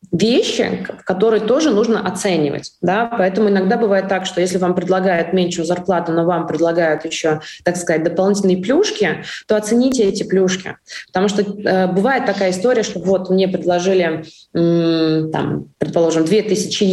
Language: Russian